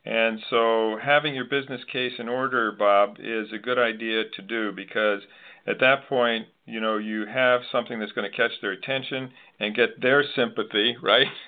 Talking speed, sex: 185 wpm, male